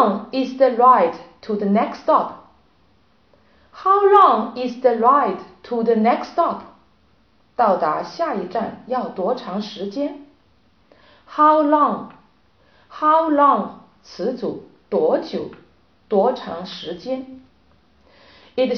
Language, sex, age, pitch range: Chinese, female, 40-59, 220-330 Hz